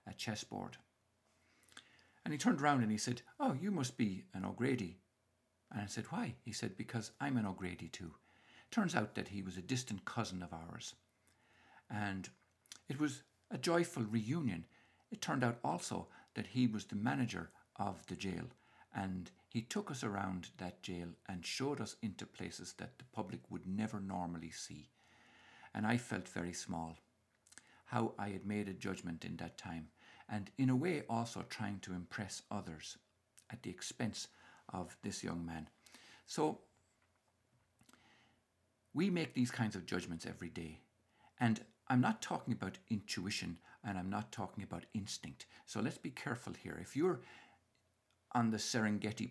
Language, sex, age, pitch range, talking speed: English, male, 60-79, 90-115 Hz, 160 wpm